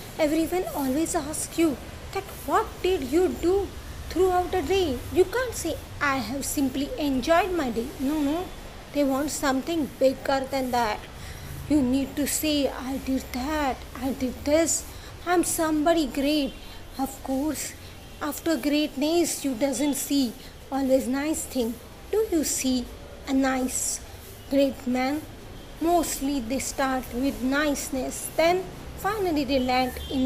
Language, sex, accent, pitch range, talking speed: English, female, Indian, 255-320 Hz, 140 wpm